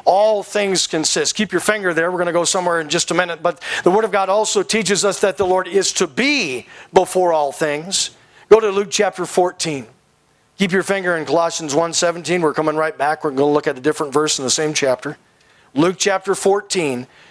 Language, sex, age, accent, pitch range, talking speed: English, male, 40-59, American, 170-205 Hz, 220 wpm